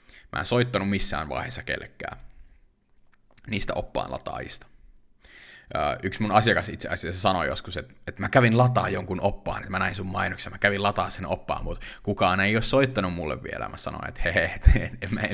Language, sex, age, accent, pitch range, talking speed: Finnish, male, 30-49, native, 90-115 Hz, 180 wpm